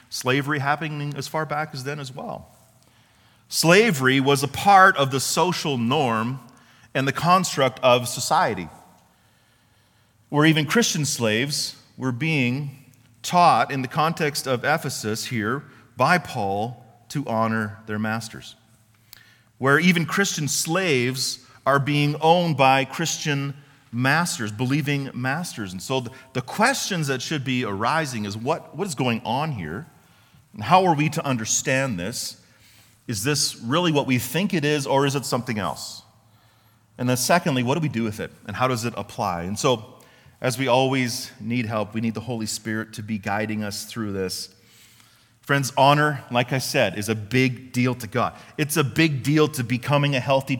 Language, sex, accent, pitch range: English, male, American, 115-150 Hz